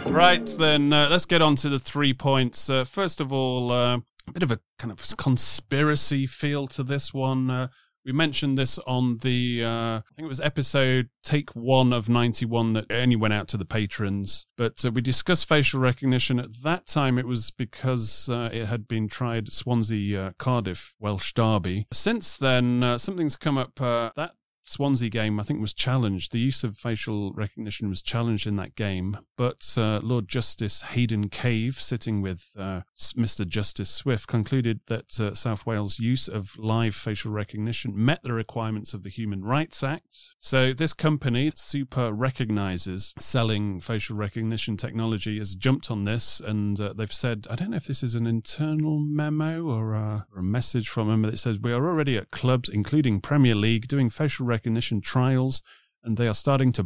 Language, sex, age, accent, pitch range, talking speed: English, male, 30-49, British, 110-130 Hz, 185 wpm